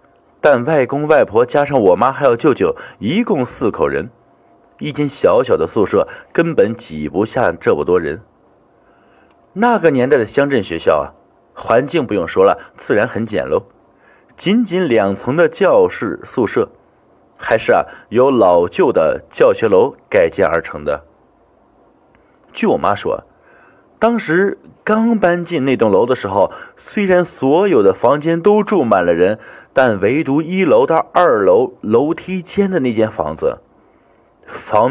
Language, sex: Chinese, male